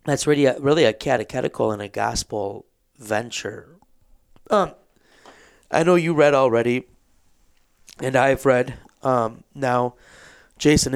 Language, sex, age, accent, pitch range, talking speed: English, male, 30-49, American, 115-135 Hz, 120 wpm